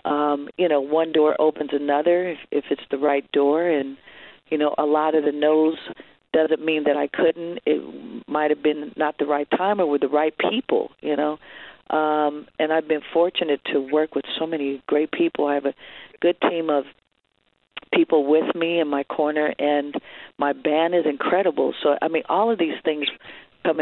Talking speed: 195 wpm